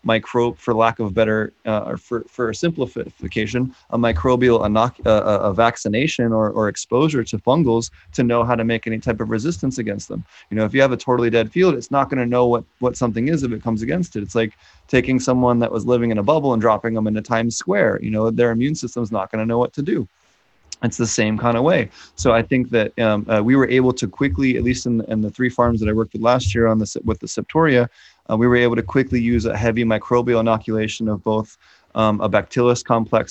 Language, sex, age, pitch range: English, male, 30-49, 110-120 Hz